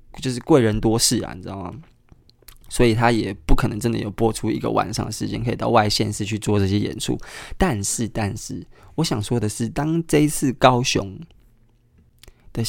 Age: 20-39